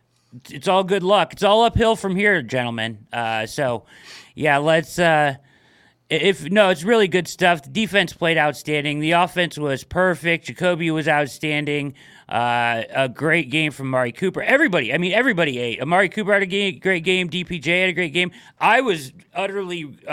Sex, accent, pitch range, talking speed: male, American, 145-190 Hz, 175 wpm